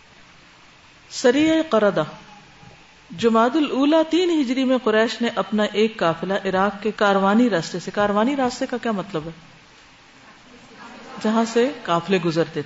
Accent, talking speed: Indian, 130 wpm